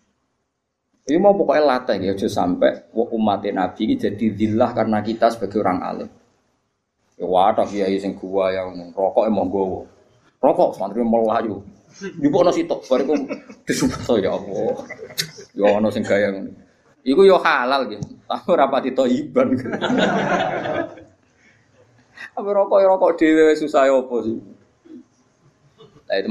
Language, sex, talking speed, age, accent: Indonesian, male, 85 wpm, 20-39, native